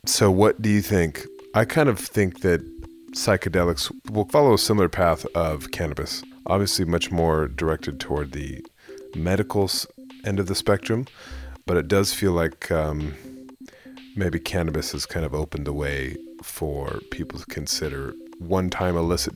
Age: 30-49